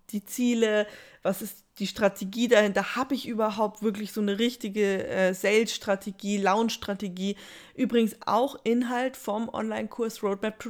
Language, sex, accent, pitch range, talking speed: German, female, German, 200-240 Hz, 135 wpm